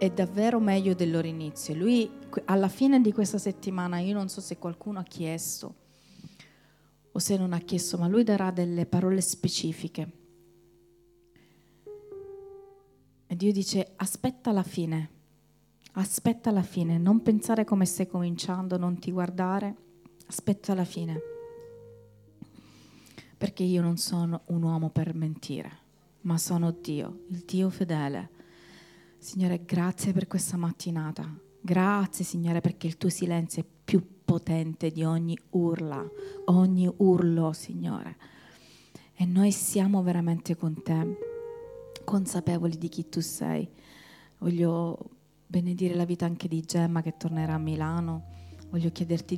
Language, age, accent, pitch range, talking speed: Italian, 30-49, native, 165-195 Hz, 130 wpm